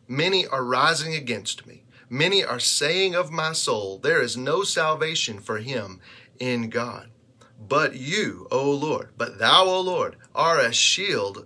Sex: male